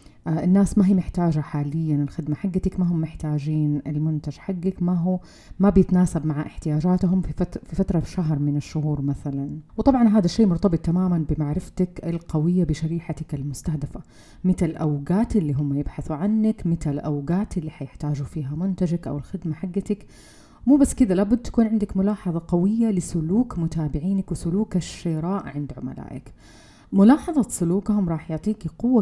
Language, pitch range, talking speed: Arabic, 155-200 Hz, 140 wpm